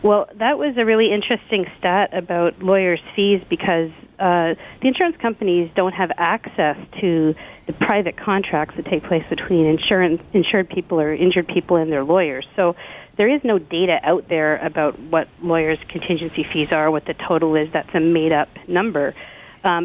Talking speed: 170 wpm